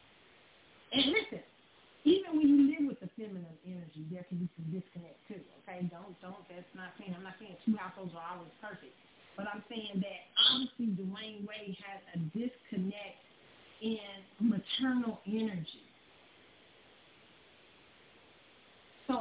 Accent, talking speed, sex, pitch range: American, 135 wpm, female, 185-245 Hz